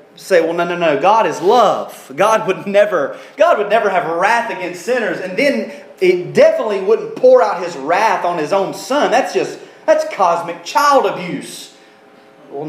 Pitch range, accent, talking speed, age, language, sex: 165-260 Hz, American, 180 wpm, 30-49, English, male